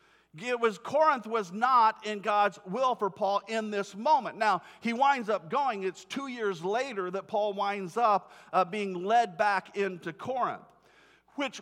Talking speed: 170 wpm